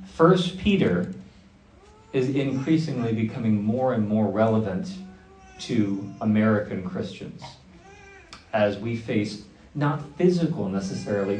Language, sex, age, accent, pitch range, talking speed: English, male, 40-59, American, 100-135 Hz, 95 wpm